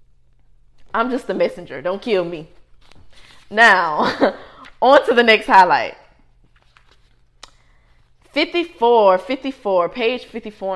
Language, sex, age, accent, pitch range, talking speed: English, female, 20-39, American, 165-225 Hz, 95 wpm